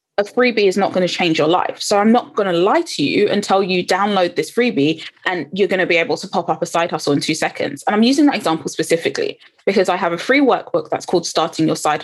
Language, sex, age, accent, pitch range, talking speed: English, female, 20-39, British, 180-255 Hz, 270 wpm